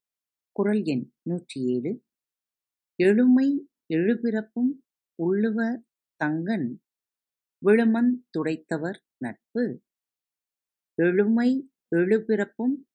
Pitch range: 150-225 Hz